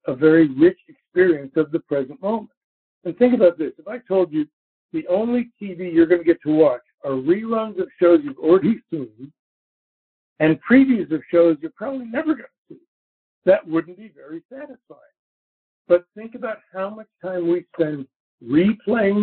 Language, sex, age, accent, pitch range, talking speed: English, male, 60-79, American, 155-230 Hz, 175 wpm